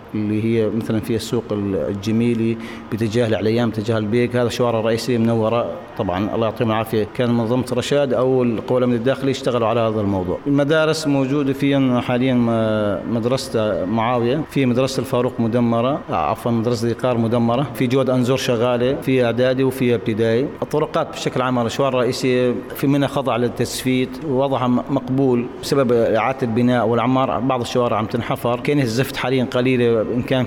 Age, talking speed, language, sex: 40-59, 150 wpm, Arabic, male